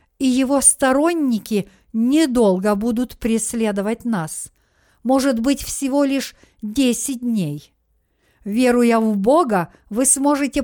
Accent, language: native, Russian